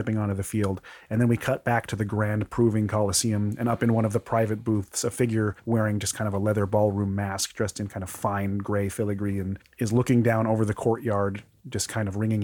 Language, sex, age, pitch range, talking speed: English, male, 30-49, 100-120 Hz, 235 wpm